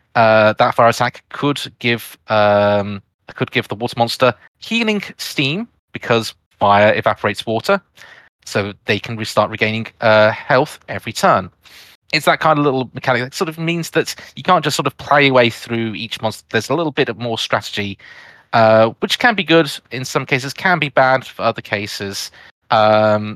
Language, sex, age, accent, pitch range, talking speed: English, male, 30-49, British, 110-135 Hz, 180 wpm